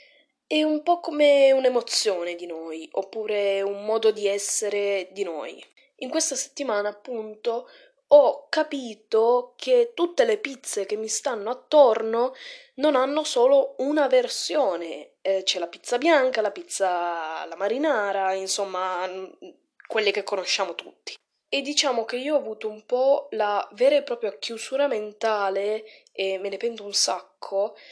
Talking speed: 145 wpm